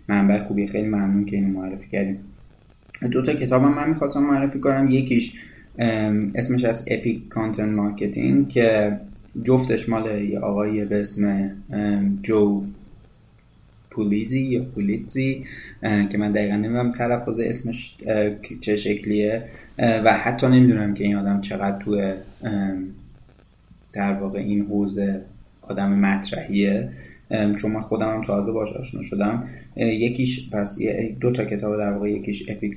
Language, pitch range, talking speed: Persian, 100-115 Hz, 130 wpm